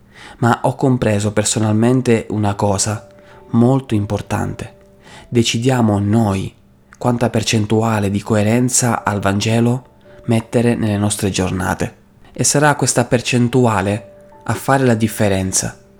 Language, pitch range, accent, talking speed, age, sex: Italian, 105-120 Hz, native, 105 wpm, 20-39, male